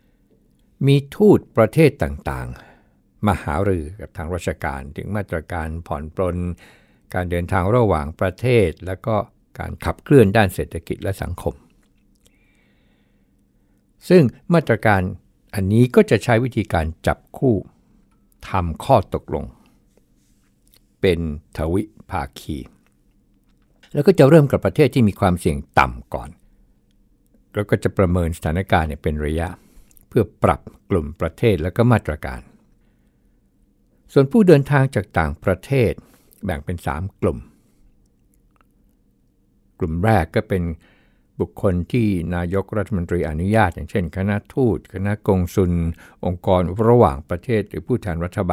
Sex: male